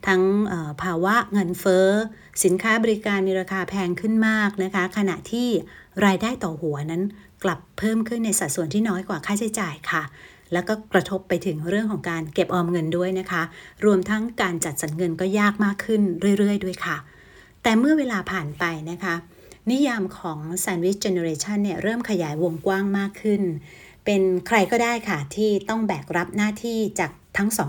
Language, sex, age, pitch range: Thai, female, 60-79, 175-210 Hz